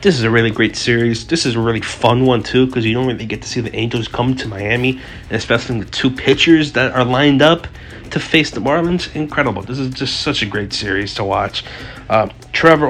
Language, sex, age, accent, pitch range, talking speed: English, male, 30-49, American, 110-130 Hz, 230 wpm